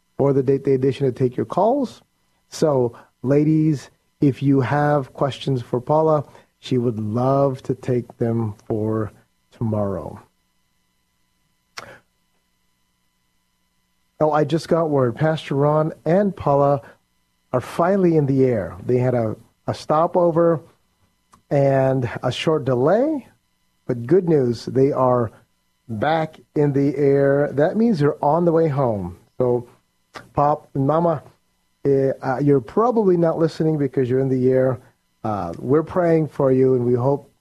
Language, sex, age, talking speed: English, male, 40-59, 140 wpm